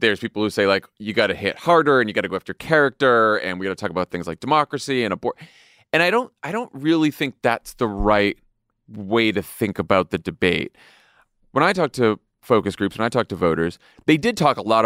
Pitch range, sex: 100-120 Hz, male